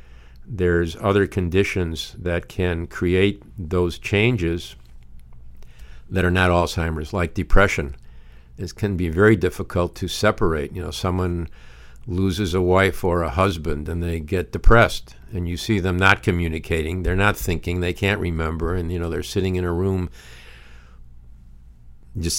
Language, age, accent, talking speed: English, 50-69, American, 145 wpm